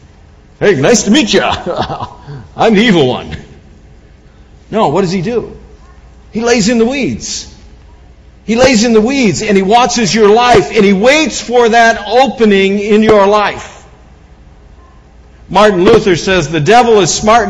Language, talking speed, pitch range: English, 155 wpm, 150-230 Hz